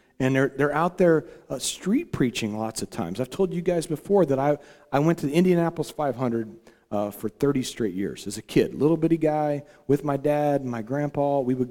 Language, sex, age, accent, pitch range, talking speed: English, male, 40-59, American, 130-185 Hz, 220 wpm